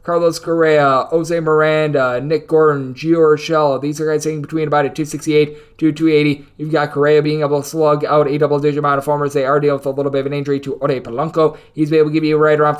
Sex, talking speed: male, 250 wpm